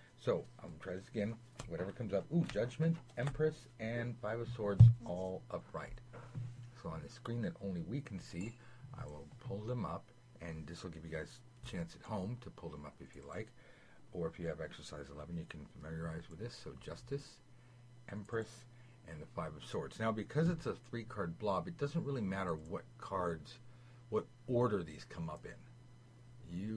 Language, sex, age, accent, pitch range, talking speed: English, male, 50-69, American, 90-125 Hz, 195 wpm